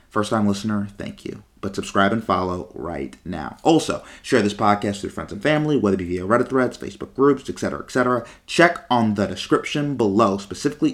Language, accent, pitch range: English, American, 95-125 Hz